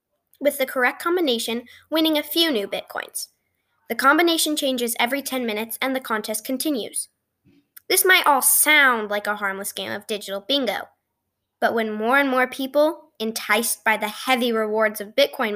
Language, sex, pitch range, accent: English, female, 225-300 Hz, American